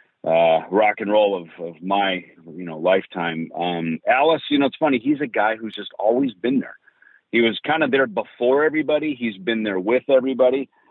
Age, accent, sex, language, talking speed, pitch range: 40-59, American, male, English, 200 wpm, 95-140 Hz